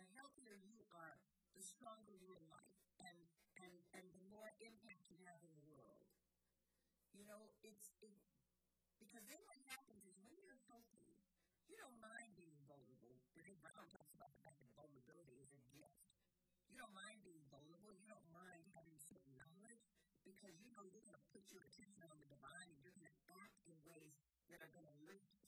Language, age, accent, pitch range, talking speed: English, 50-69, American, 150-200 Hz, 200 wpm